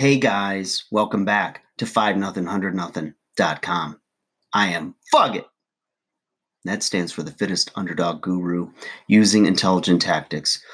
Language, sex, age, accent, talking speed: English, male, 30-49, American, 130 wpm